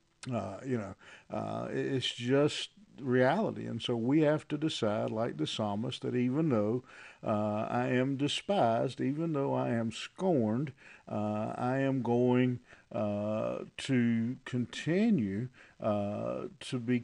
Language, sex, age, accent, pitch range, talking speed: English, male, 50-69, American, 110-135 Hz, 135 wpm